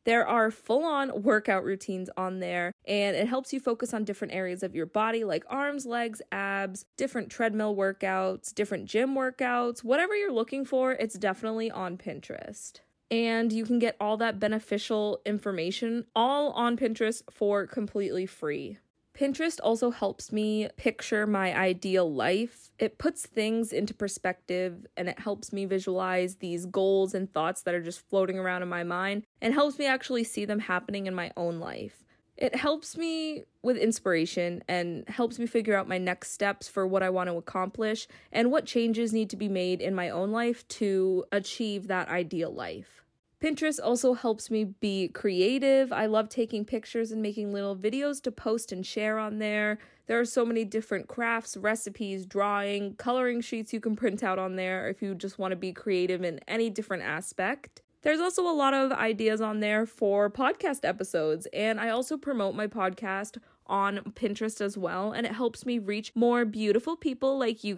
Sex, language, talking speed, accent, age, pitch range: female, English, 180 wpm, American, 20-39, 195-240 Hz